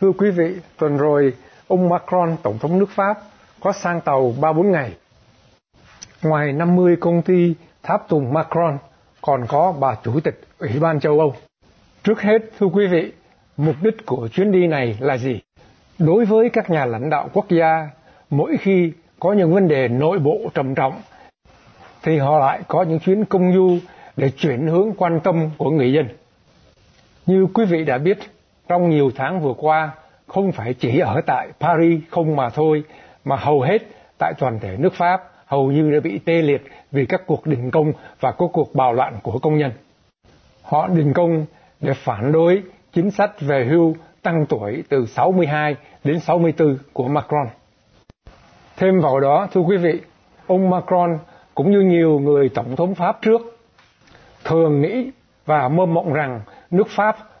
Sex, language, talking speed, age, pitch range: male, Vietnamese, 175 wpm, 60-79, 145-180 Hz